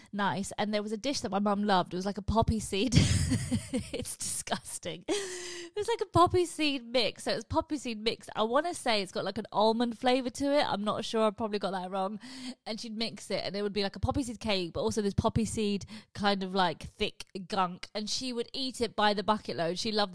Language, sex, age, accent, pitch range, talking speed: English, female, 20-39, British, 195-255 Hz, 255 wpm